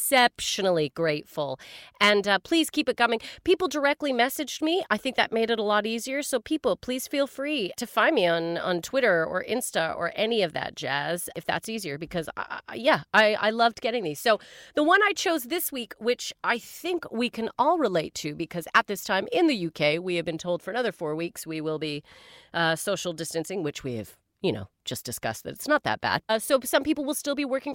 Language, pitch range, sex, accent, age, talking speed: English, 185-275 Hz, female, American, 30-49, 230 wpm